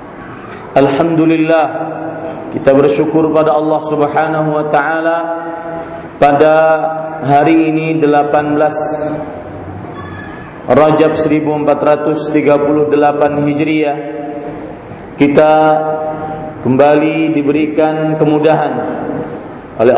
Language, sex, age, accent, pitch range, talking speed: Indonesian, male, 40-59, native, 145-155 Hz, 60 wpm